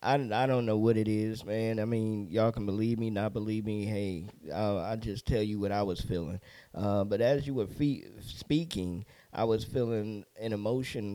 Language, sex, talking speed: English, male, 200 wpm